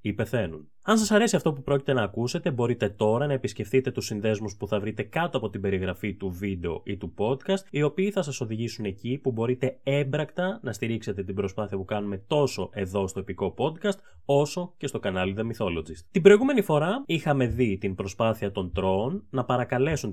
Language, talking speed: Greek, 195 wpm